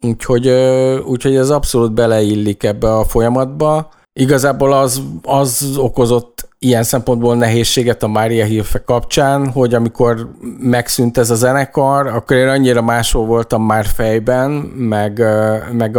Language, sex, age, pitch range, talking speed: Hungarian, male, 50-69, 110-130 Hz, 130 wpm